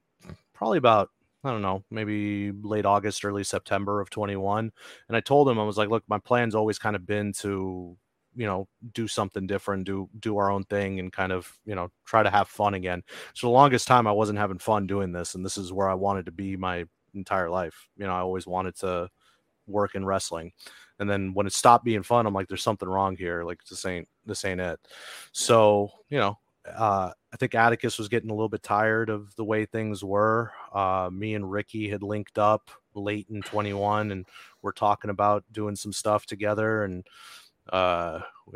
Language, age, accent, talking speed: English, 30-49, American, 210 wpm